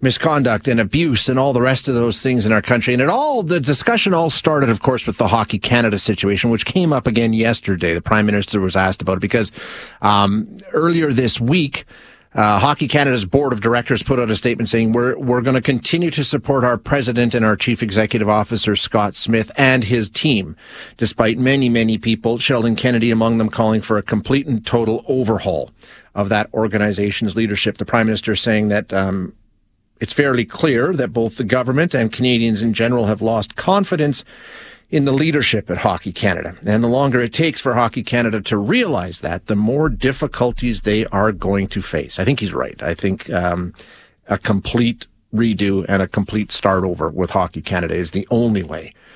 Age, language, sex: 40-59, English, male